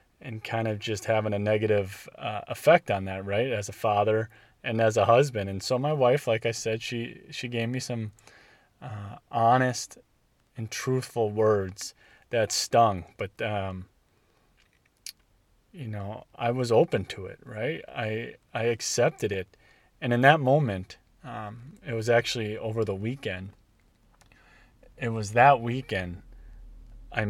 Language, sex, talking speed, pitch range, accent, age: English, male, 150 wpm, 100-120 Hz, American, 30-49